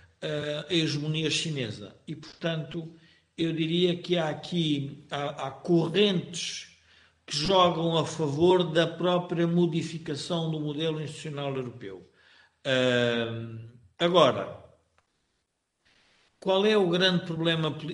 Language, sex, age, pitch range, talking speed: Portuguese, male, 50-69, 140-175 Hz, 105 wpm